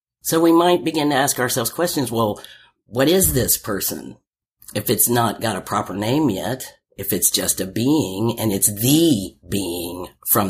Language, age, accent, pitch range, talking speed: English, 50-69, American, 105-145 Hz, 175 wpm